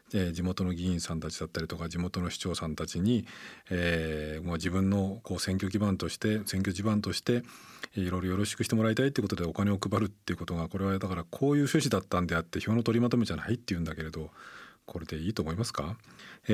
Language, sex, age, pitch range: Japanese, male, 40-59, 85-105 Hz